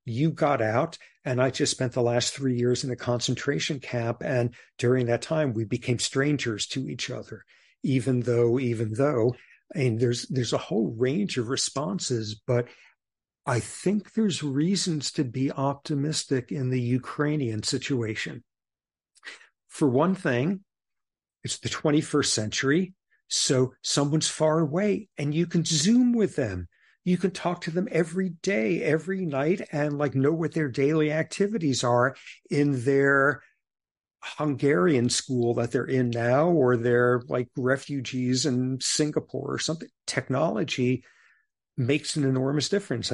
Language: Ukrainian